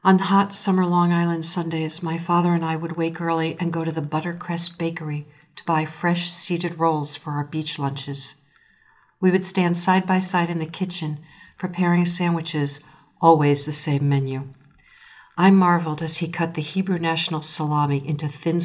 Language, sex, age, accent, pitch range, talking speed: English, female, 50-69, American, 145-175 Hz, 175 wpm